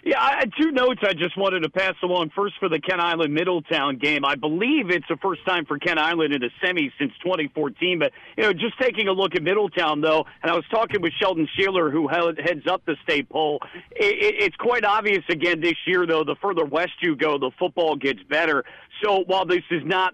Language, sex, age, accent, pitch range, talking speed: English, male, 50-69, American, 155-190 Hz, 225 wpm